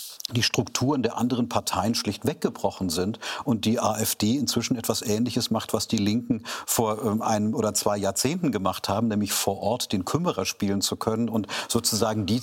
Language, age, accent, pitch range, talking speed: German, 40-59, German, 110-125 Hz, 175 wpm